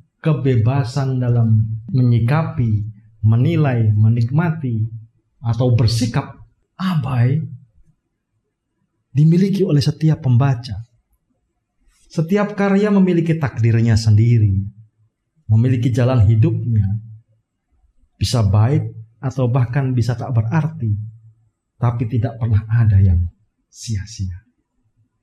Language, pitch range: Indonesian, 110-140 Hz